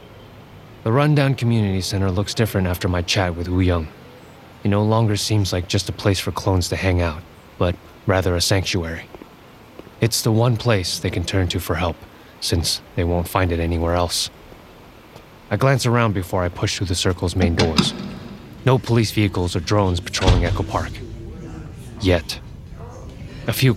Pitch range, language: 90-110 Hz, English